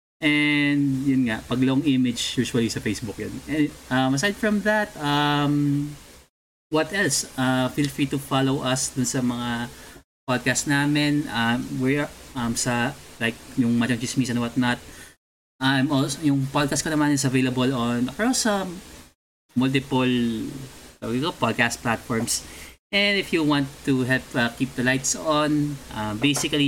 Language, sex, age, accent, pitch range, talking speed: Filipino, male, 20-39, native, 115-140 Hz, 155 wpm